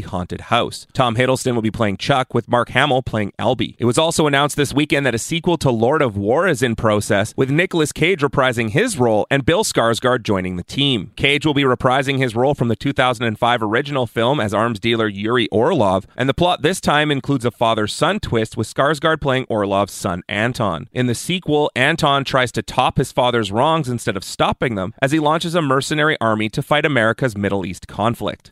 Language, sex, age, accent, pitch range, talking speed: English, male, 30-49, American, 115-145 Hz, 205 wpm